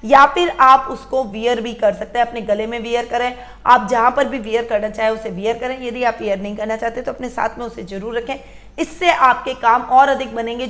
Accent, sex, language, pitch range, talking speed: native, female, Hindi, 220-265 Hz, 240 wpm